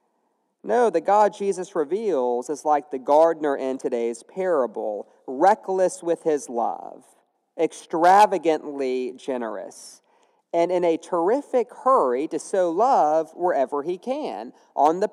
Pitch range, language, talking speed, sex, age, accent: 150-225 Hz, English, 125 wpm, male, 40-59, American